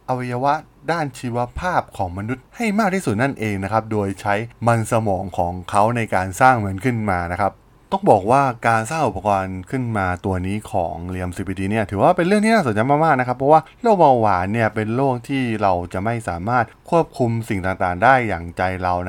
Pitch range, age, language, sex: 100-130 Hz, 20-39, Thai, male